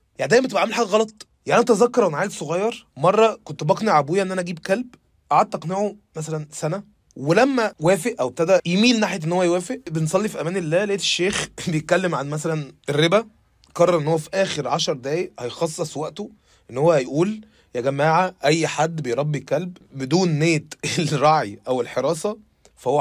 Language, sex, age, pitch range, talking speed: Arabic, male, 20-39, 140-190 Hz, 175 wpm